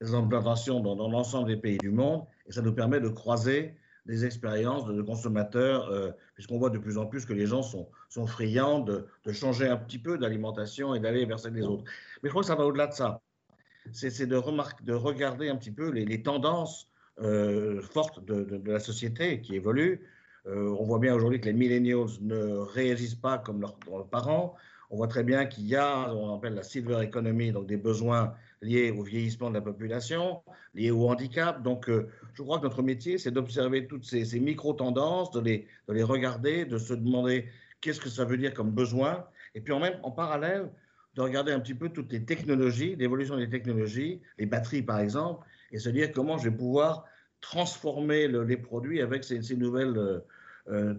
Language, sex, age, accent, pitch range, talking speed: French, male, 50-69, French, 110-140 Hz, 210 wpm